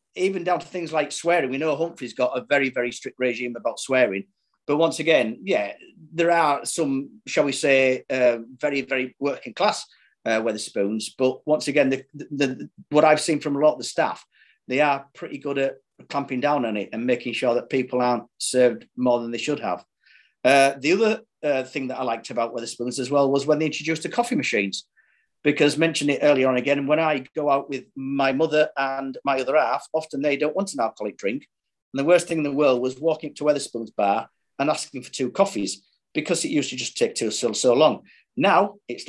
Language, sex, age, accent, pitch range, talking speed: English, male, 40-59, British, 125-155 Hz, 220 wpm